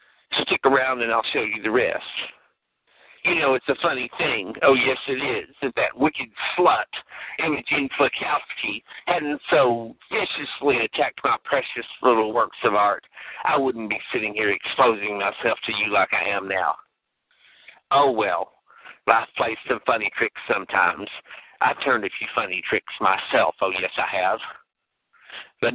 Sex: male